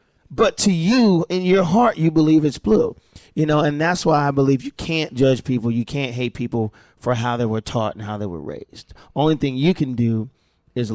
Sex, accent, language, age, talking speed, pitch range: male, American, English, 30-49, 225 wpm, 110-140 Hz